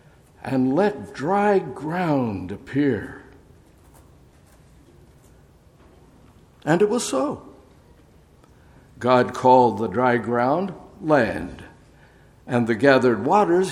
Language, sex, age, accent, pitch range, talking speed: English, male, 60-79, American, 125-165 Hz, 85 wpm